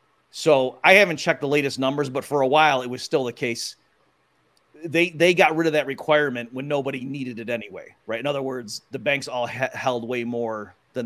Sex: male